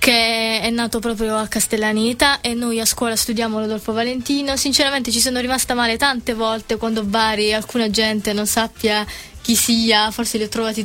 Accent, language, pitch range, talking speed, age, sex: native, Italian, 205-230 Hz, 185 wpm, 20-39, female